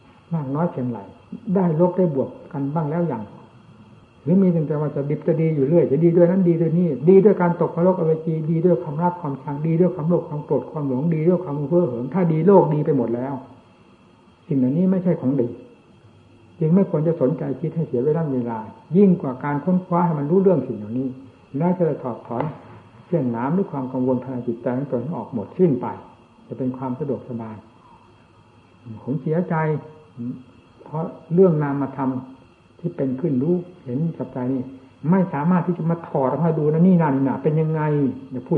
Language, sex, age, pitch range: Thai, male, 60-79, 130-170 Hz